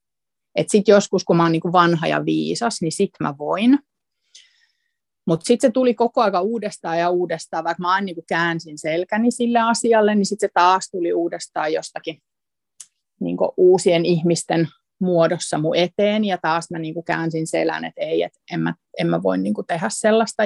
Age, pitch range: 30-49, 165-200 Hz